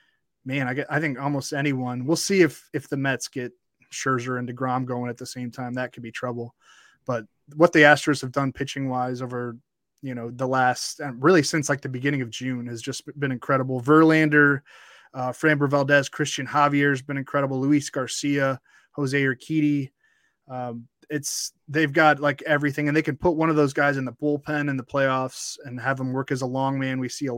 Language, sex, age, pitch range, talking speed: English, male, 20-39, 130-150 Hz, 205 wpm